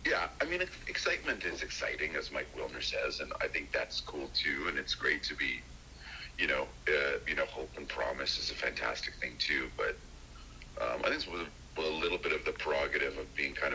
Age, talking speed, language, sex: 40-59, 210 wpm, English, male